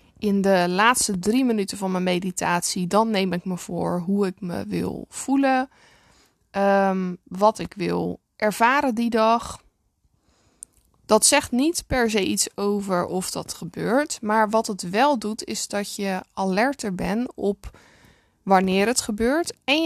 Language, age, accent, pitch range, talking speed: Dutch, 20-39, Dutch, 190-230 Hz, 150 wpm